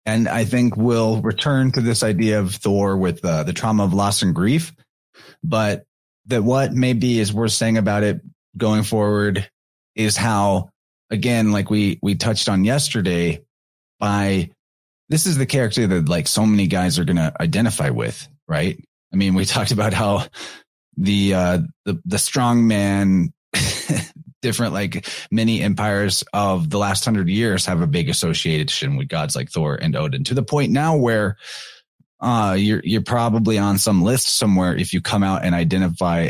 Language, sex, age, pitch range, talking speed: English, male, 30-49, 95-115 Hz, 170 wpm